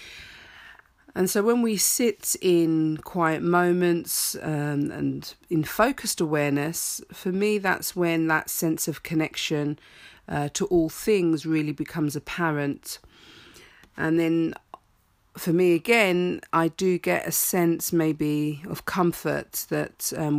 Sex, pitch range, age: female, 150-175 Hz, 40-59